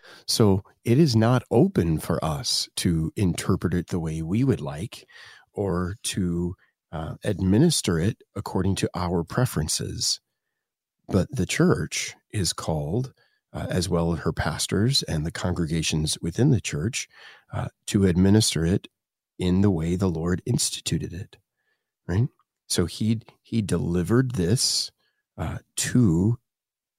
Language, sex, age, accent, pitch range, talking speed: English, male, 40-59, American, 90-115 Hz, 135 wpm